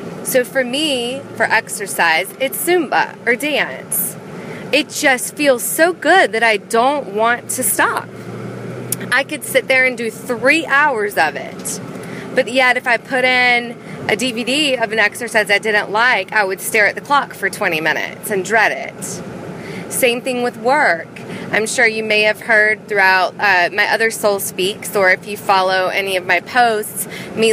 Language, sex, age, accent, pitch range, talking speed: English, female, 20-39, American, 195-240 Hz, 175 wpm